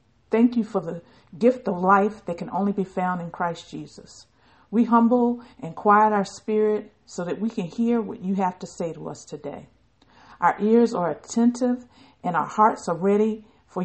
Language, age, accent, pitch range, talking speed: English, 50-69, American, 180-220 Hz, 190 wpm